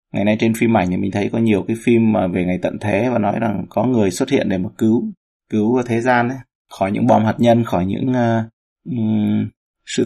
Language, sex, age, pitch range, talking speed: Vietnamese, male, 20-39, 100-115 Hz, 240 wpm